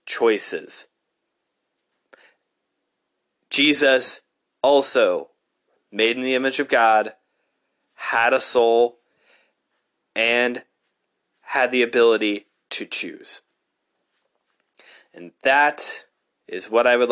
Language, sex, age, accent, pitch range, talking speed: English, male, 20-39, American, 115-160 Hz, 85 wpm